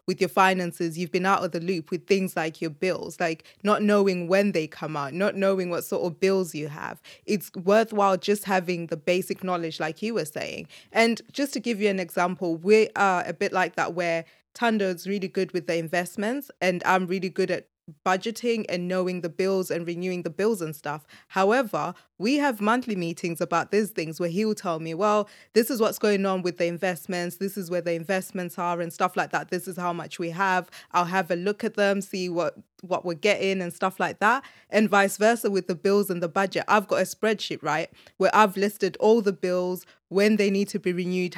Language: English